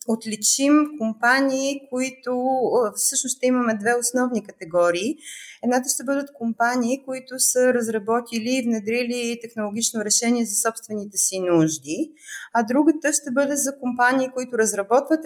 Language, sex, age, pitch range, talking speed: Bulgarian, female, 20-39, 210-250 Hz, 125 wpm